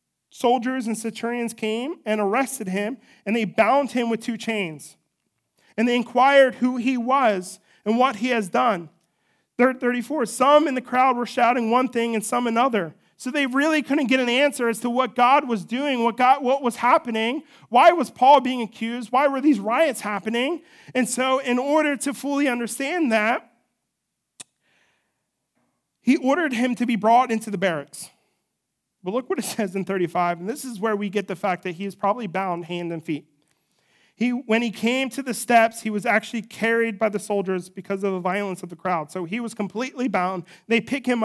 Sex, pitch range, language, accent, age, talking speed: male, 210-260 Hz, English, American, 40-59, 195 wpm